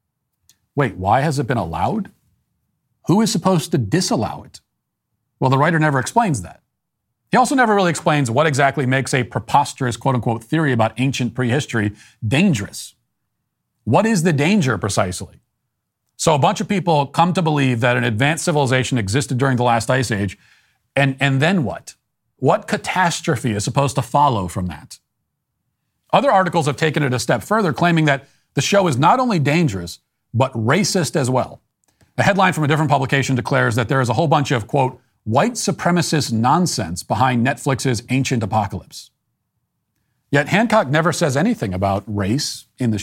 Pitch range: 115-160 Hz